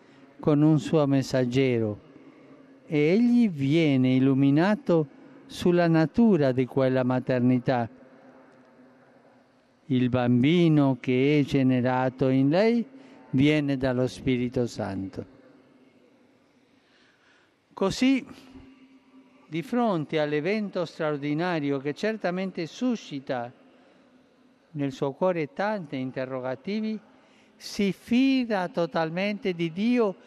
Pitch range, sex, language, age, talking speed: 130-190 Hz, male, Italian, 50-69, 85 wpm